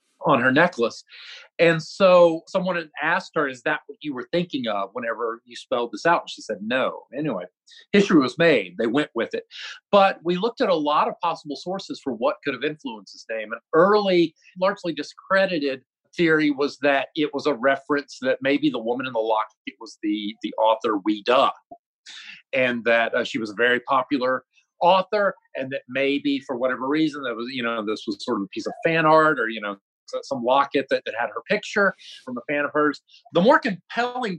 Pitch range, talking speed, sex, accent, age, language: 140-205 Hz, 210 wpm, male, American, 40-59, English